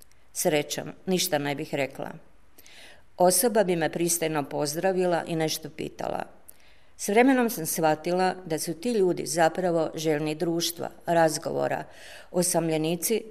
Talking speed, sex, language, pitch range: 115 wpm, female, Croatian, 155-195 Hz